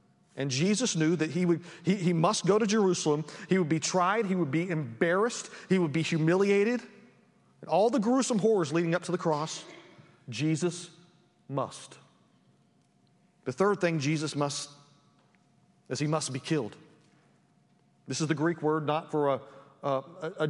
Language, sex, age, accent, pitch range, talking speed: English, male, 40-59, American, 155-200 Hz, 165 wpm